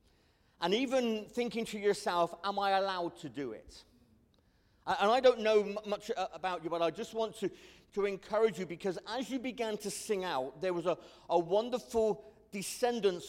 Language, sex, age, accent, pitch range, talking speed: English, male, 40-59, British, 165-205 Hz, 175 wpm